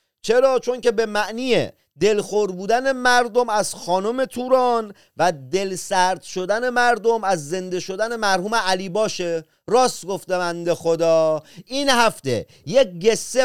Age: 40-59